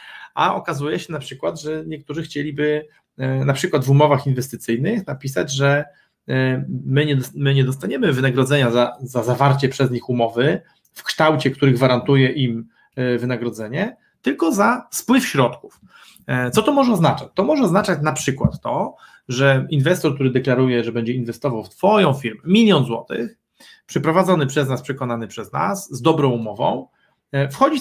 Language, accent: Polish, native